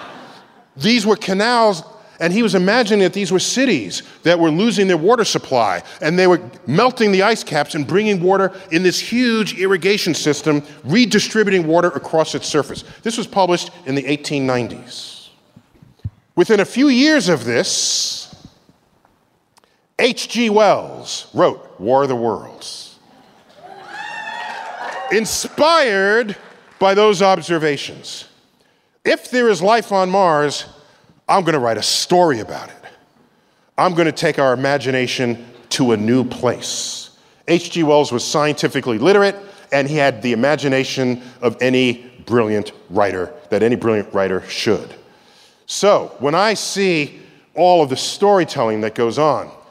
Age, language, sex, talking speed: 40-59, English, male, 140 wpm